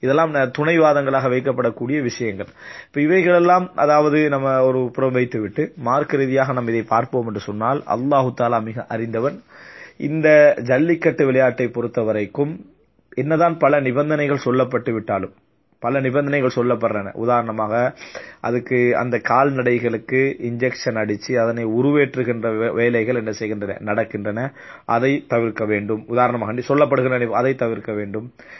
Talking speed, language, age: 100 wpm, English, 30-49